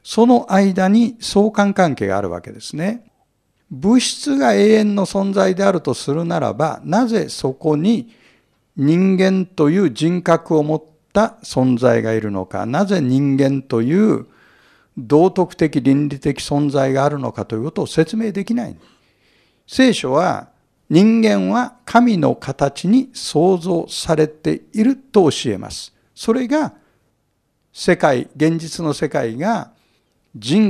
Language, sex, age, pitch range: Japanese, male, 60-79, 135-205 Hz